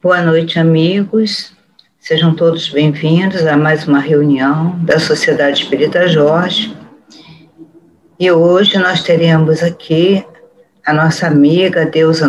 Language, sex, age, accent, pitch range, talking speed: Portuguese, female, 50-69, Brazilian, 155-185 Hz, 110 wpm